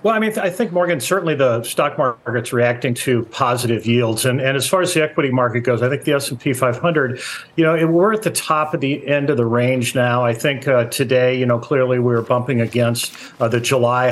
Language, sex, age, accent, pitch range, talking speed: English, male, 50-69, American, 120-155 Hz, 230 wpm